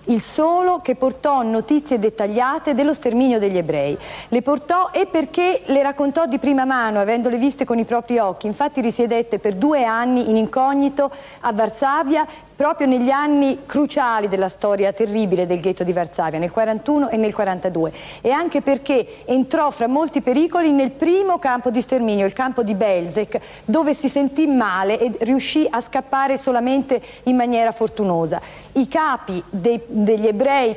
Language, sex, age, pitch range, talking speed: Italian, female, 40-59, 220-280 Hz, 160 wpm